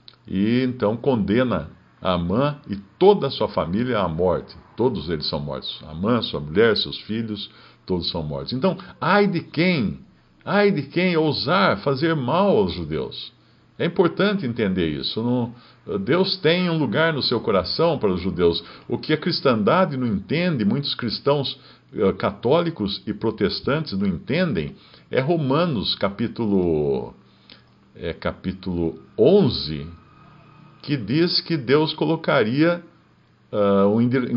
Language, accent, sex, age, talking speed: Portuguese, Brazilian, male, 50-69, 135 wpm